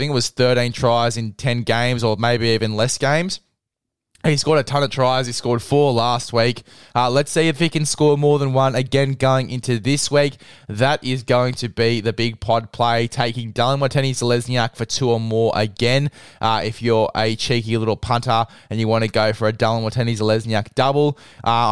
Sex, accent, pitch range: male, Australian, 115-140 Hz